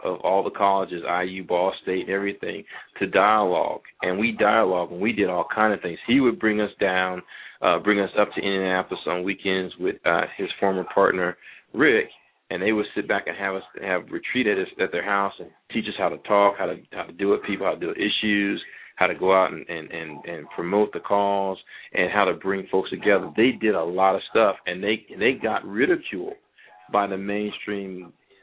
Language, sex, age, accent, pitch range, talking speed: English, male, 40-59, American, 95-105 Hz, 215 wpm